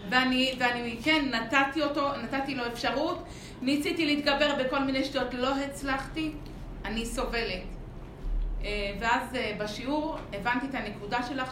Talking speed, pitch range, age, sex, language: 120 wpm, 235-290 Hz, 30-49, female, Hebrew